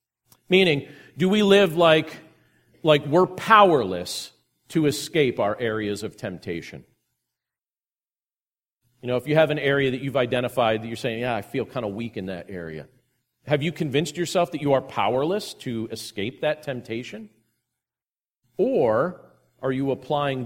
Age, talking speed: 40-59, 155 wpm